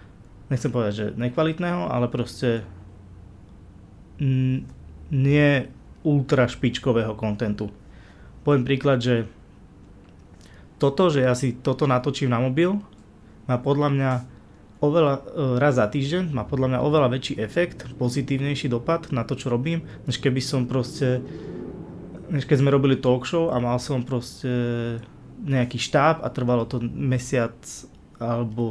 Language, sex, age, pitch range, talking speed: Slovak, male, 20-39, 120-140 Hz, 130 wpm